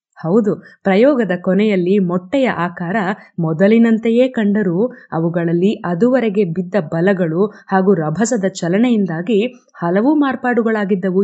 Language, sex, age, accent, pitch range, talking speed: Kannada, female, 20-39, native, 190-250 Hz, 85 wpm